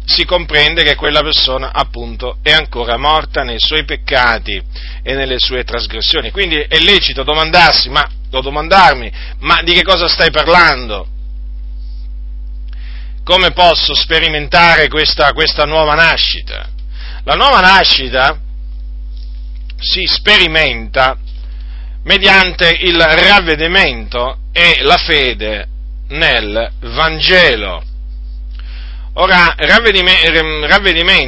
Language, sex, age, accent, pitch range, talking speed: Italian, male, 40-59, native, 110-175 Hz, 95 wpm